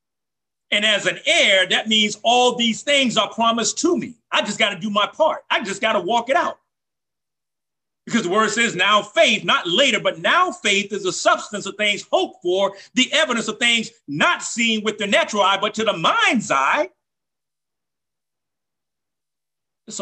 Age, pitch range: 40-59, 220-315 Hz